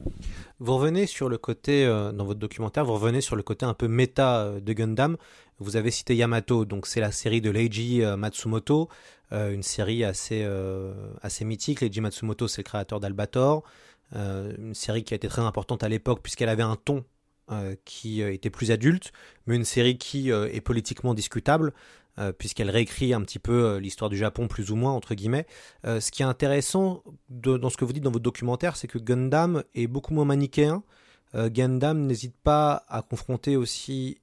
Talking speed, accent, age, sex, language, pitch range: 195 wpm, French, 30-49, male, French, 105-125 Hz